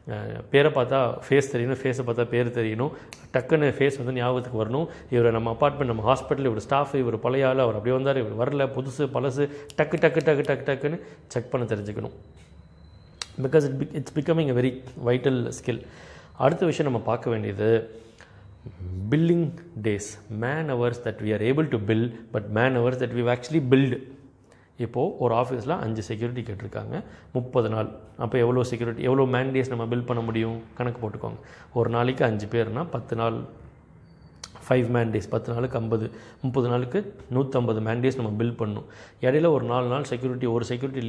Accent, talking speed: native, 160 wpm